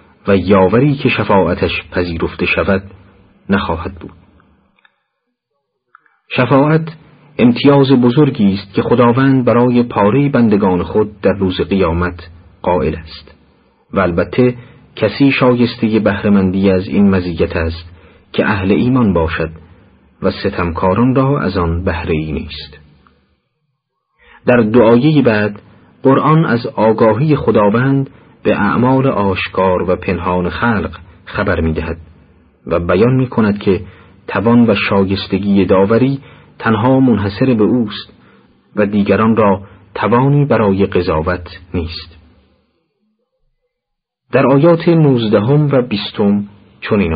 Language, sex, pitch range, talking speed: Persian, male, 90-125 Hz, 105 wpm